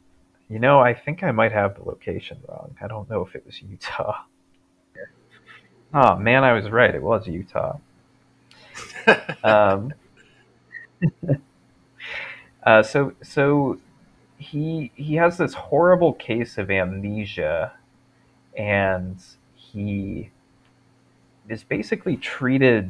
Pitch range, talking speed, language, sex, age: 100-135 Hz, 110 wpm, English, male, 30-49